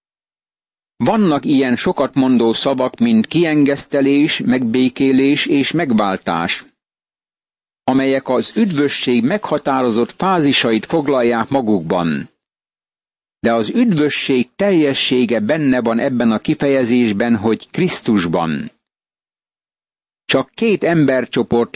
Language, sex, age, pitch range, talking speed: Hungarian, male, 60-79, 125-155 Hz, 85 wpm